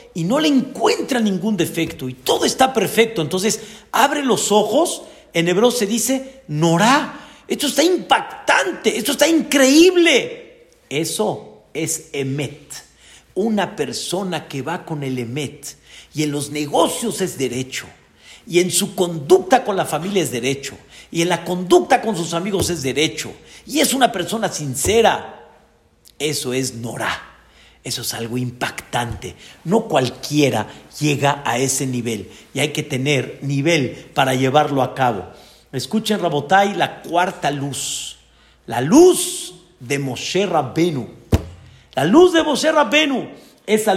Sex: male